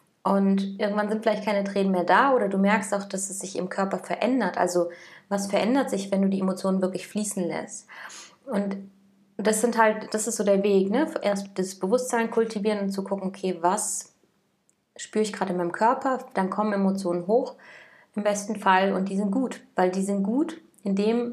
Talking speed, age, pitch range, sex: 200 wpm, 20-39, 185-215 Hz, female